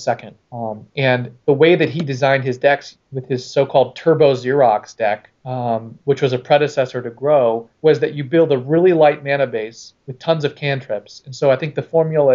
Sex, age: male, 30-49